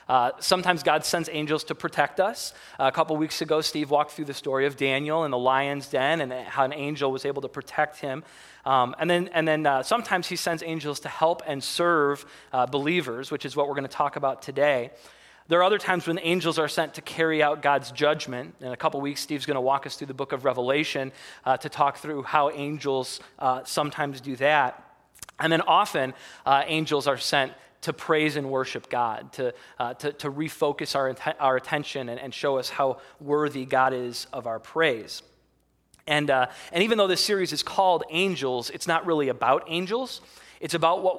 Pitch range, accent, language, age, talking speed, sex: 135-165 Hz, American, English, 20-39, 210 wpm, male